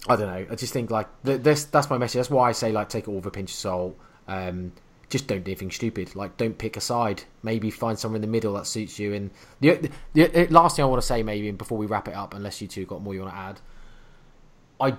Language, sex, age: English, male, 20-39